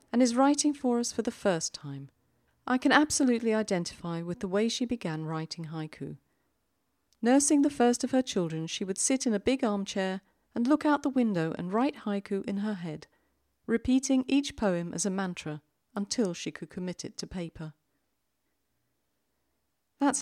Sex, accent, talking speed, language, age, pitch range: female, British, 170 wpm, English, 40-59, 155-255 Hz